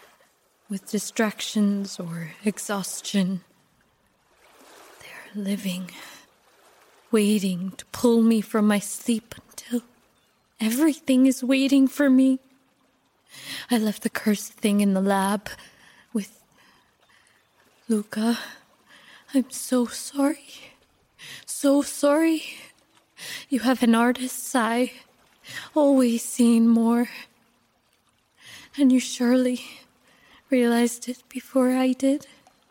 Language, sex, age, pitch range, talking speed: English, female, 20-39, 220-265 Hz, 90 wpm